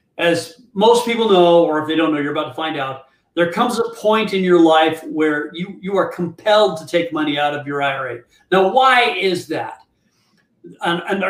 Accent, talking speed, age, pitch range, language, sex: American, 205 wpm, 40-59, 155-190 Hz, English, male